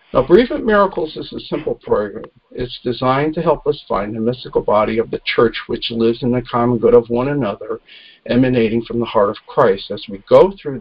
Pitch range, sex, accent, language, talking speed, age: 115-155 Hz, male, American, English, 215 wpm, 50-69